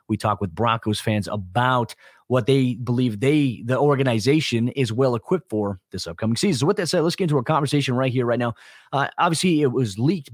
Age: 30-49